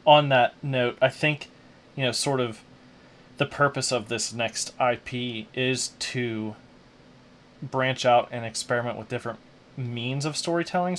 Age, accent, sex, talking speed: 30-49, American, male, 140 wpm